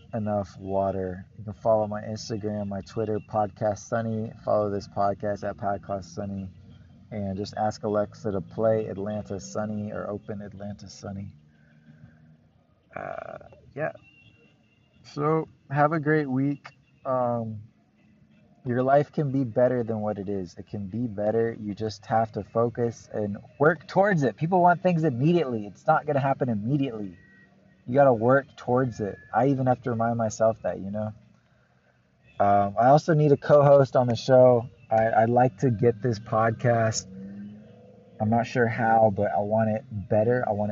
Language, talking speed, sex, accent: English, 165 wpm, male, American